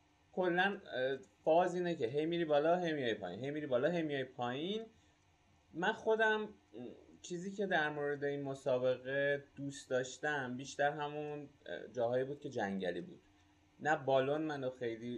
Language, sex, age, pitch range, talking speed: Persian, male, 20-39, 120-155 Hz, 145 wpm